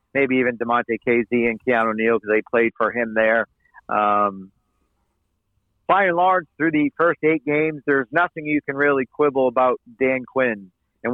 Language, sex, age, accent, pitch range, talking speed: English, male, 50-69, American, 125-155 Hz, 170 wpm